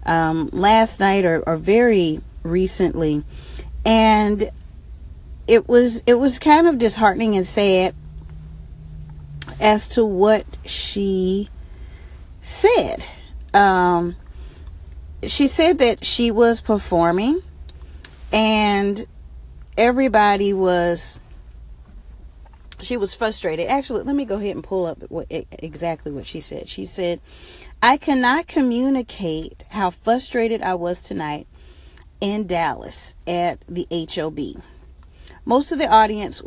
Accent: American